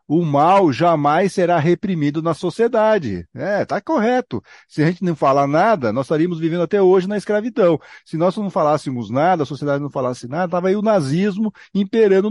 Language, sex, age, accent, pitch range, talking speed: Portuguese, male, 50-69, Brazilian, 135-205 Hz, 185 wpm